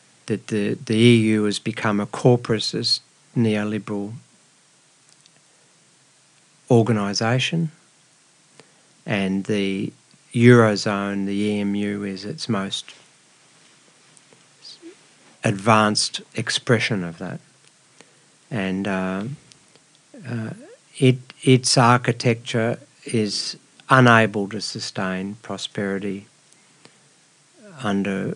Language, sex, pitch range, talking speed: Finnish, male, 100-135 Hz, 70 wpm